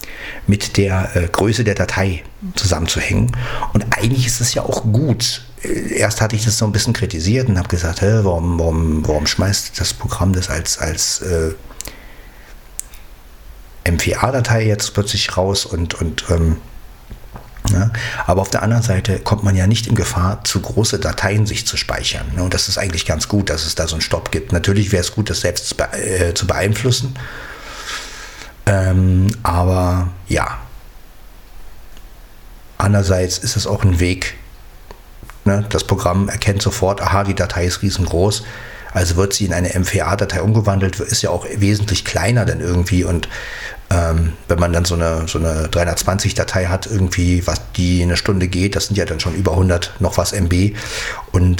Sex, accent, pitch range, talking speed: male, German, 90-105 Hz, 165 wpm